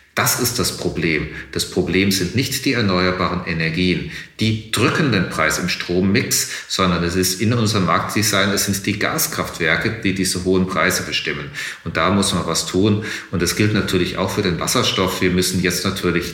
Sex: male